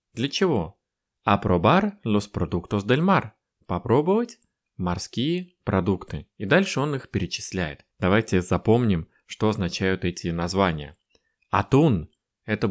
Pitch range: 95-125 Hz